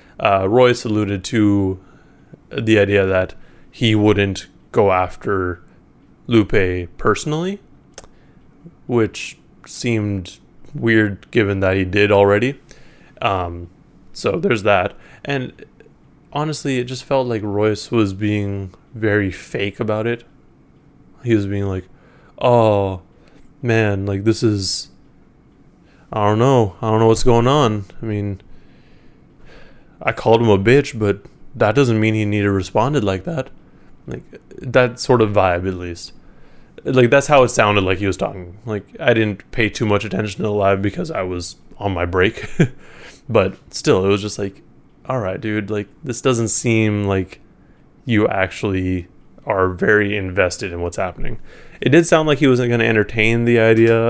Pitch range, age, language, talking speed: 95-120 Hz, 20-39, English, 150 wpm